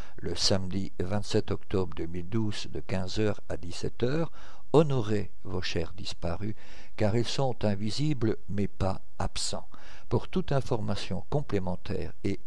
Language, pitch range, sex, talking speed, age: French, 95-125 Hz, male, 120 wpm, 50-69